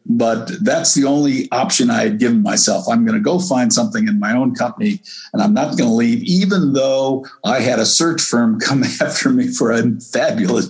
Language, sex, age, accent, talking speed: English, male, 60-79, American, 215 wpm